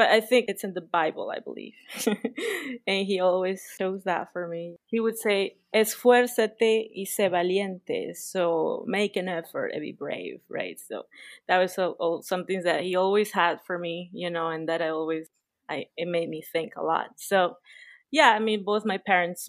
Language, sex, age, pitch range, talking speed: English, female, 20-39, 175-215 Hz, 190 wpm